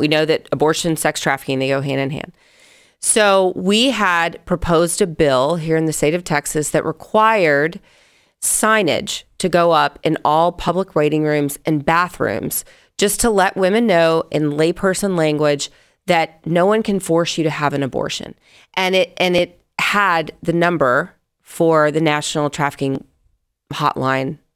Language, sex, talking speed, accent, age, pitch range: English, female, 160 wpm, American, 30-49, 150-205 Hz